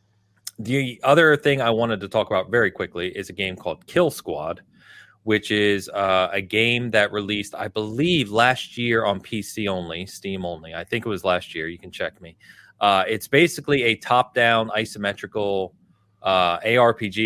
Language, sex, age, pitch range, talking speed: English, male, 30-49, 95-115 Hz, 175 wpm